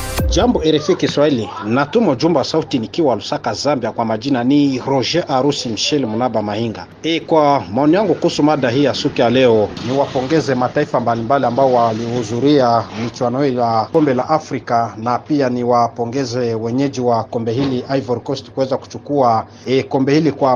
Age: 40-59